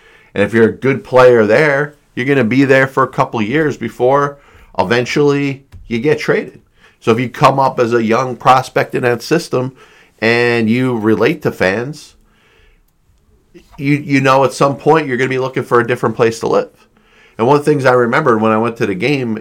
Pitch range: 110-140 Hz